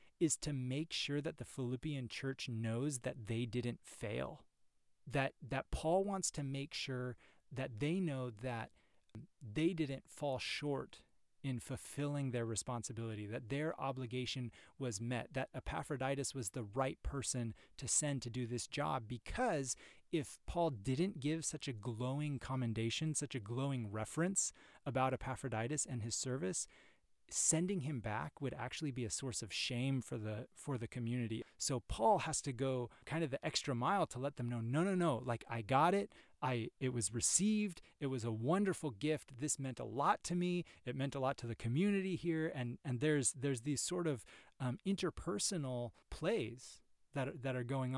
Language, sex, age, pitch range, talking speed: English, male, 30-49, 120-150 Hz, 175 wpm